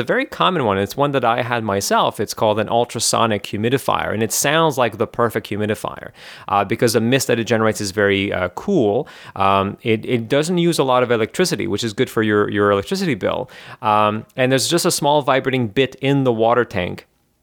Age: 30-49